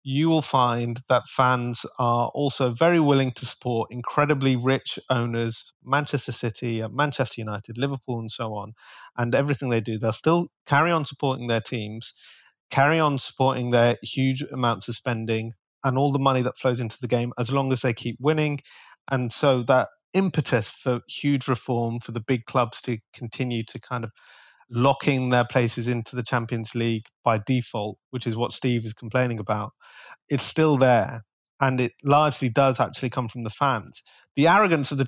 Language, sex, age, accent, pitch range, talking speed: English, male, 30-49, British, 115-135 Hz, 180 wpm